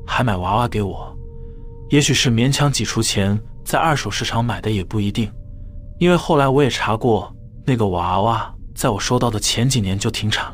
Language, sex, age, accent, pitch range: Chinese, male, 20-39, native, 105-125 Hz